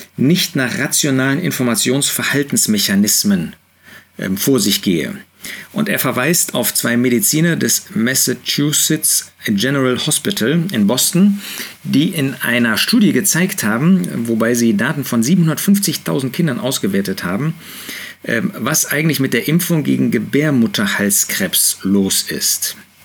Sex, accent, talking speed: male, German, 110 wpm